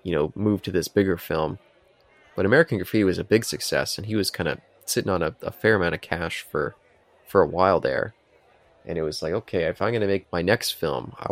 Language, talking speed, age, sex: English, 245 wpm, 20-39, male